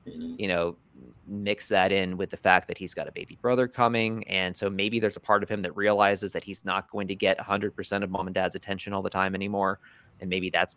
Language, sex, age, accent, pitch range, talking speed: English, male, 30-49, American, 90-100 Hz, 245 wpm